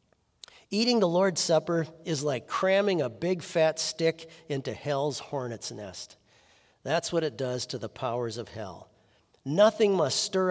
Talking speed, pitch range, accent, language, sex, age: 155 wpm, 125-175 Hz, American, English, male, 50-69